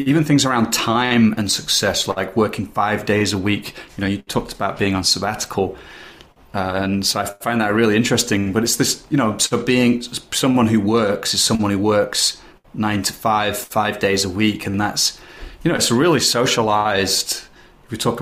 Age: 30-49